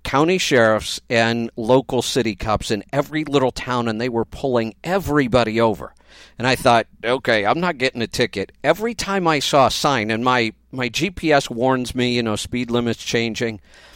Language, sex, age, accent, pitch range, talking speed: English, male, 50-69, American, 115-150 Hz, 180 wpm